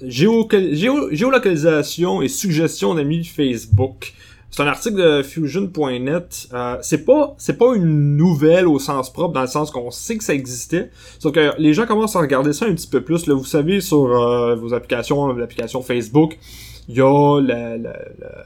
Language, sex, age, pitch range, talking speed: French, male, 20-39, 125-170 Hz, 180 wpm